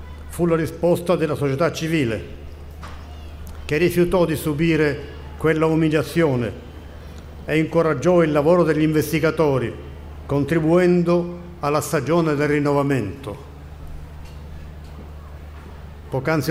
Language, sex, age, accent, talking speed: Italian, male, 50-69, native, 85 wpm